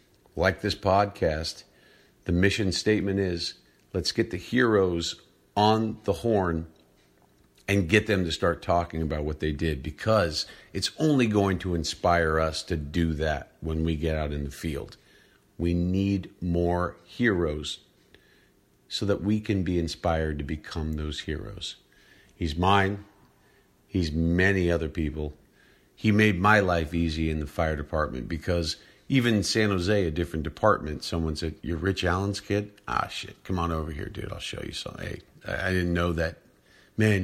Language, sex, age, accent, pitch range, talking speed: English, male, 50-69, American, 80-95 Hz, 165 wpm